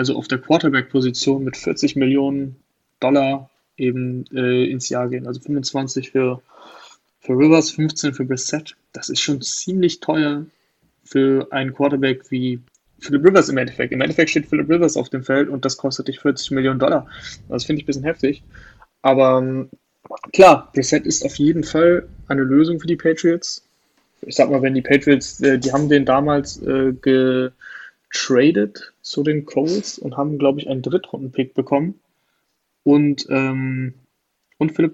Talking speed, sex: 165 wpm, male